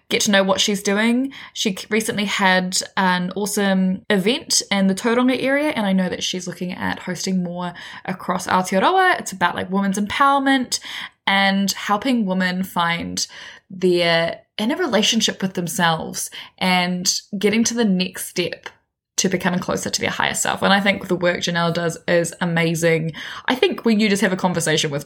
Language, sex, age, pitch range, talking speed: English, female, 10-29, 180-230 Hz, 170 wpm